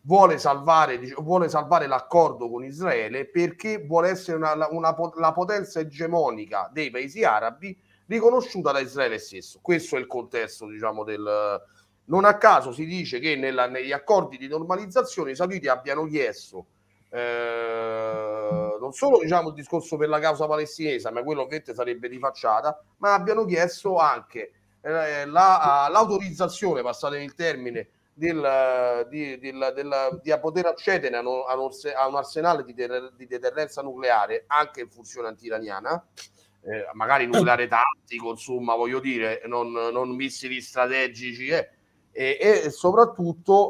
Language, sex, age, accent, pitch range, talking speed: Italian, male, 30-49, native, 125-175 Hz, 140 wpm